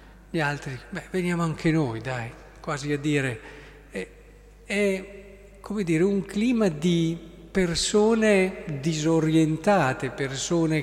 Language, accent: Italian, native